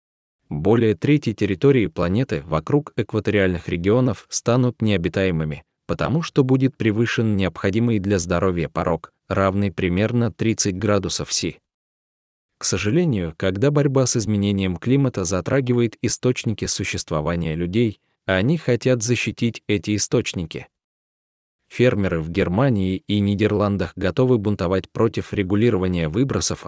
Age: 20-39